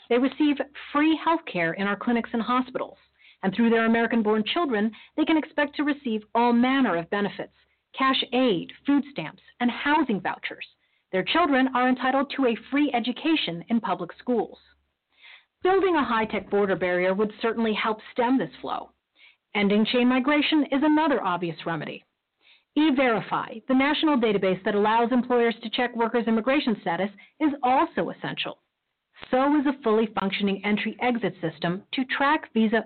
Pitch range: 205-285 Hz